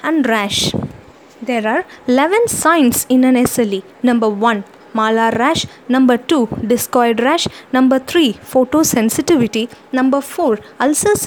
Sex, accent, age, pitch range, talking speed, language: female, Indian, 20-39, 235-320 Hz, 120 wpm, English